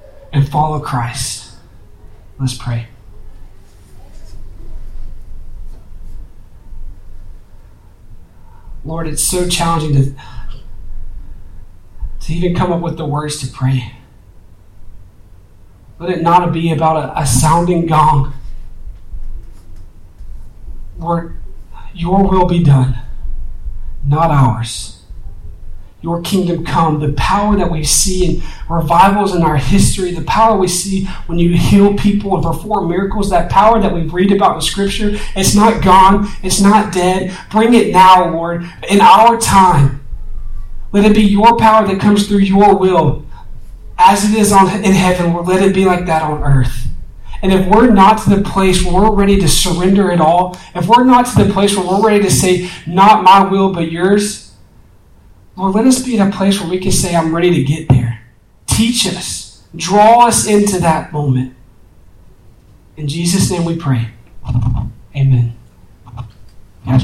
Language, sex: English, male